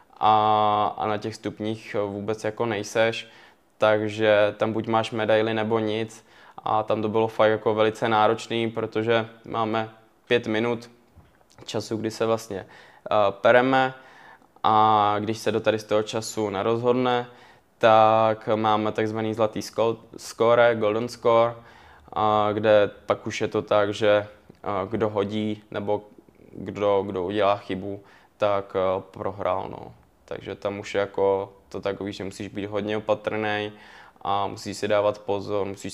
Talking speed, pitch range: 135 wpm, 100-110 Hz